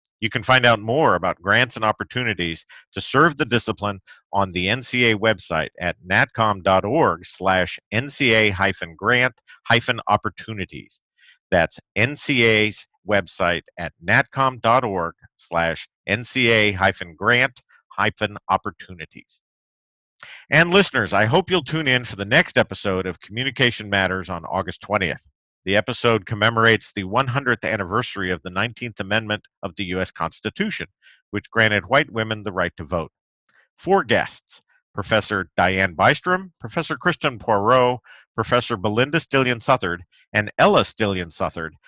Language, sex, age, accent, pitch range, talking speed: English, male, 50-69, American, 95-125 Hz, 115 wpm